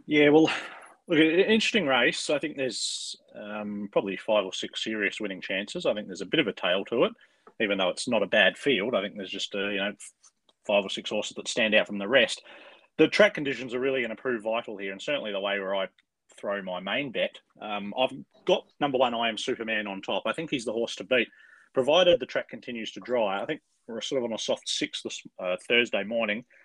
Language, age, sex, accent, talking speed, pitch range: English, 30-49, male, Australian, 245 wpm, 105-130 Hz